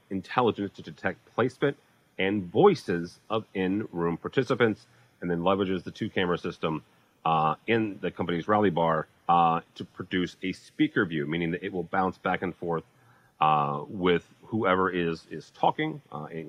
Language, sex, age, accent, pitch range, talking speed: English, male, 30-49, American, 85-115 Hz, 155 wpm